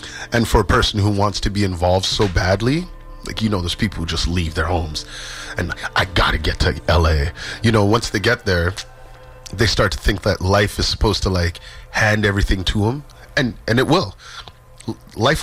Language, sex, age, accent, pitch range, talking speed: English, male, 30-49, American, 90-120 Hz, 205 wpm